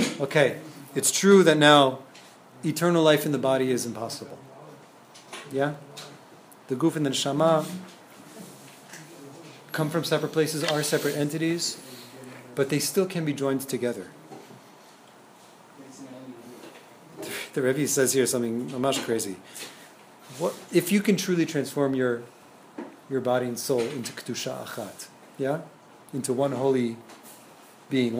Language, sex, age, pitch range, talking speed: English, male, 30-49, 130-170 Hz, 125 wpm